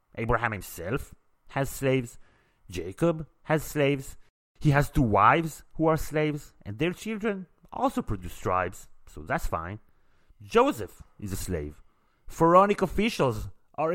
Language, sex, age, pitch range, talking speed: English, male, 30-49, 95-150 Hz, 130 wpm